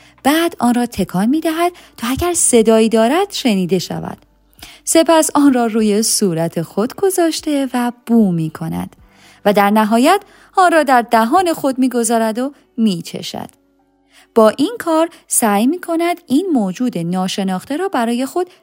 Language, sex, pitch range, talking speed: Persian, female, 190-300 Hz, 150 wpm